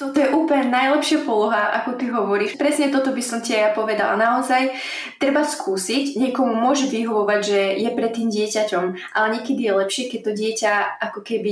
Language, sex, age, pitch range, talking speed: Slovak, female, 20-39, 215-250 Hz, 180 wpm